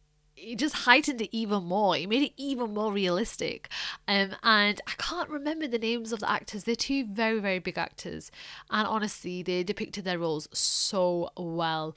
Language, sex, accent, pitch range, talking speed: English, female, British, 180-230 Hz, 180 wpm